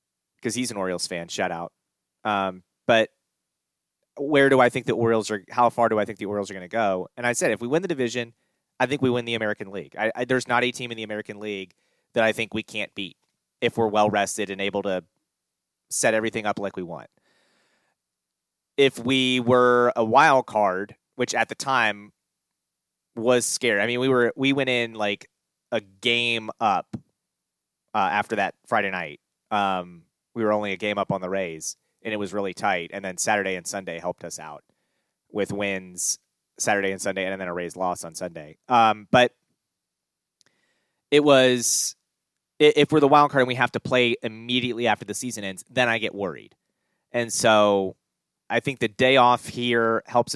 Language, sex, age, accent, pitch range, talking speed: English, male, 30-49, American, 100-125 Hz, 195 wpm